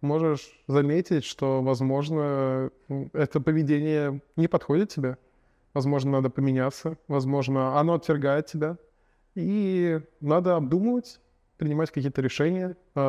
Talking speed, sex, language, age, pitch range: 100 wpm, male, Russian, 20-39, 135-175 Hz